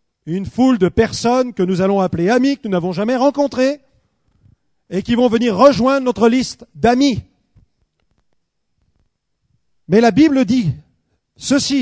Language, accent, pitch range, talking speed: French, French, 220-270 Hz, 135 wpm